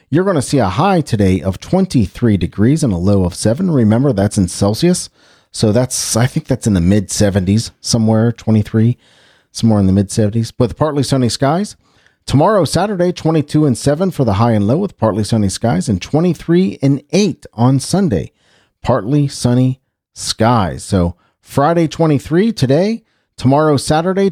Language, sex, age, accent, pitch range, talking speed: English, male, 40-59, American, 100-150 Hz, 170 wpm